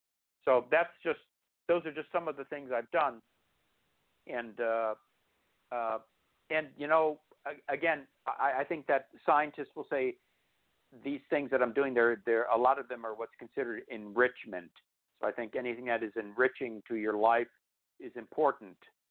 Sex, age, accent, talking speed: male, 60-79, American, 170 wpm